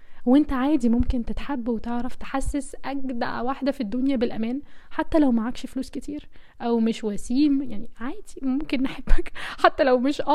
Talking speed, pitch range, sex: 150 wpm, 245-315 Hz, female